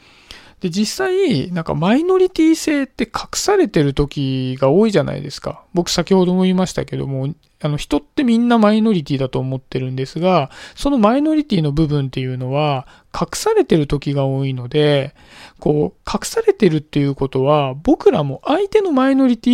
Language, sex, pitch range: Japanese, male, 145-240 Hz